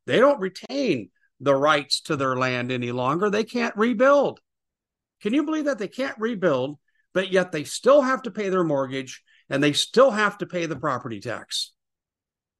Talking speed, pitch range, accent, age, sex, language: 180 wpm, 150-230 Hz, American, 50-69, male, English